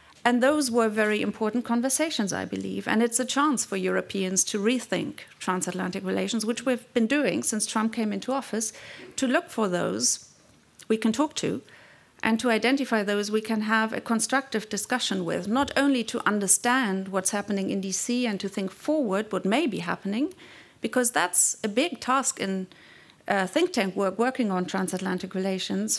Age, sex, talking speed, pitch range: 40-59, female, 175 wpm, 190-240 Hz